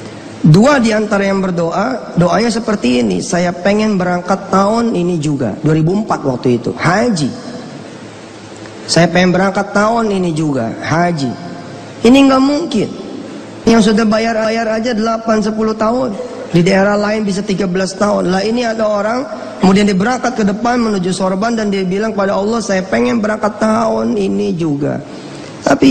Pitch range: 135-200 Hz